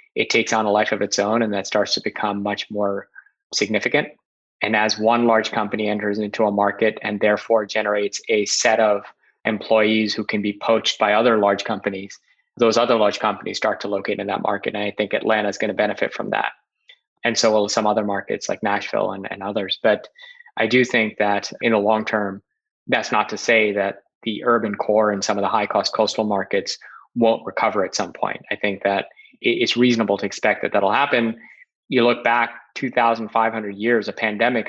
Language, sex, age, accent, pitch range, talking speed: English, male, 20-39, American, 100-115 Hz, 205 wpm